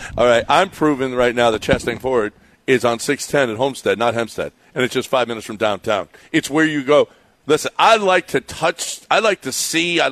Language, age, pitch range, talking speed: English, 50-69, 120-150 Hz, 220 wpm